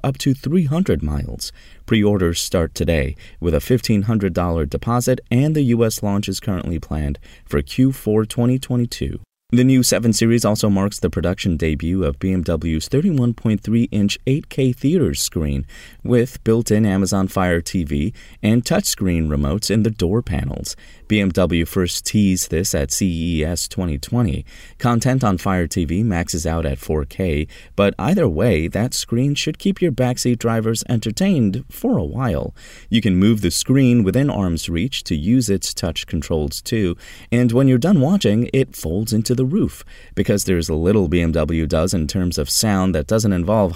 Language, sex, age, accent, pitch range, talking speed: English, male, 30-49, American, 85-125 Hz, 160 wpm